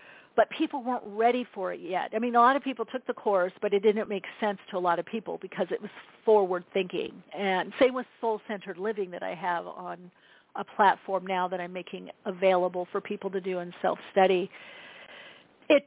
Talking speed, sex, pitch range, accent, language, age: 205 wpm, female, 195-245 Hz, American, English, 50-69